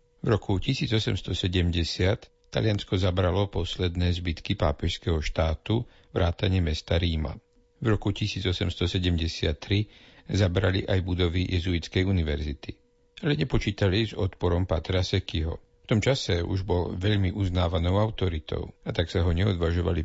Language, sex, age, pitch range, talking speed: Slovak, male, 50-69, 85-100 Hz, 115 wpm